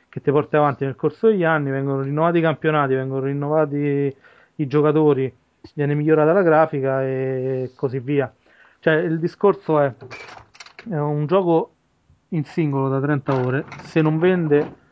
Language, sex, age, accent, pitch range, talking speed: Italian, male, 30-49, native, 135-160 Hz, 155 wpm